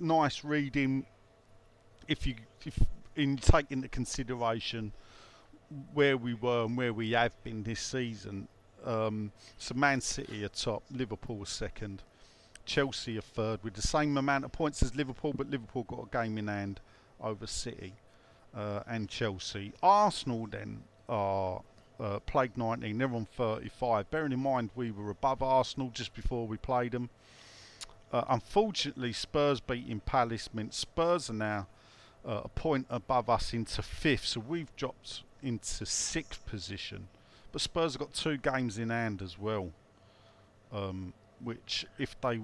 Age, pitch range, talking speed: 50-69, 105-135 Hz, 150 wpm